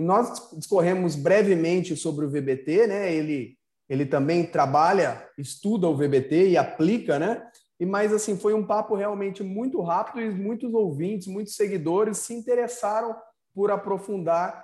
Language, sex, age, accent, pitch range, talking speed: Portuguese, male, 30-49, Brazilian, 170-215 Hz, 145 wpm